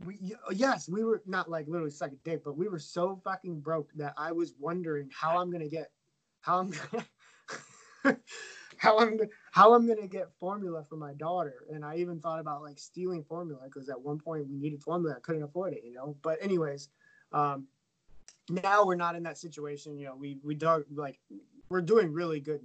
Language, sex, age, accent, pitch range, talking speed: English, male, 20-39, American, 150-180 Hz, 190 wpm